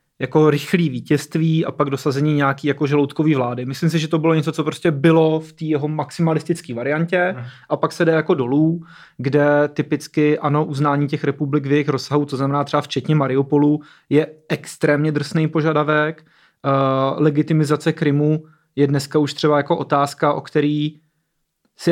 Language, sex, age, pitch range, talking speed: Czech, male, 30-49, 145-160 Hz, 165 wpm